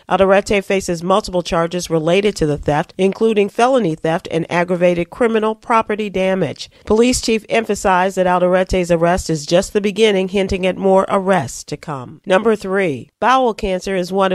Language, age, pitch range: English, 40-59, 165-205 Hz